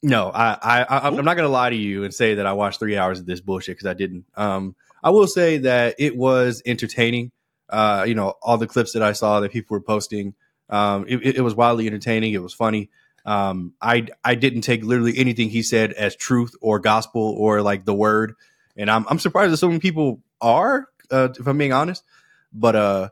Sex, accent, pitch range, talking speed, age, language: male, American, 110-145 Hz, 220 wpm, 20-39, English